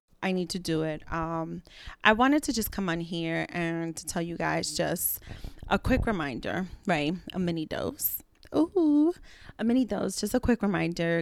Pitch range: 170-215 Hz